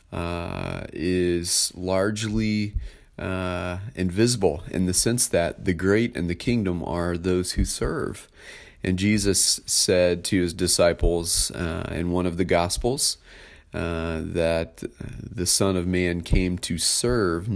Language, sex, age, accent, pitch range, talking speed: English, male, 30-49, American, 85-100 Hz, 135 wpm